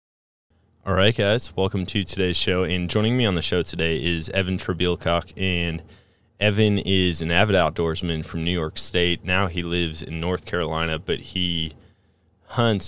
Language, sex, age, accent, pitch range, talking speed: English, male, 20-39, American, 80-100 Hz, 165 wpm